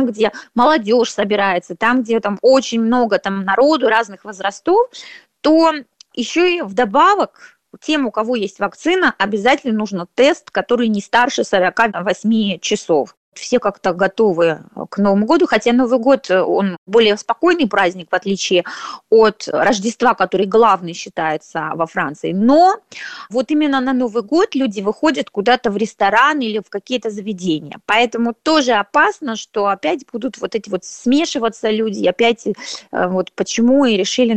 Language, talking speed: Russian, 145 wpm